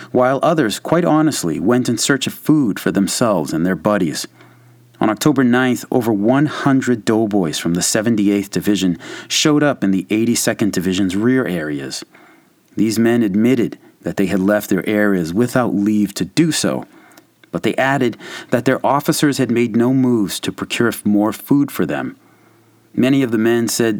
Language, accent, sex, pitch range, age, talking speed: English, American, male, 100-130 Hz, 30-49, 170 wpm